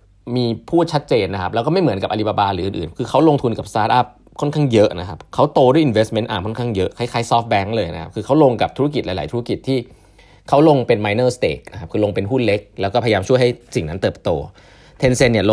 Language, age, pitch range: Thai, 20-39, 95-130 Hz